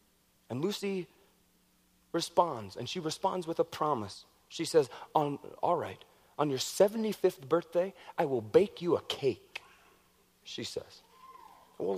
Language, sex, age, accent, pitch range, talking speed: English, male, 30-49, American, 155-225 Hz, 130 wpm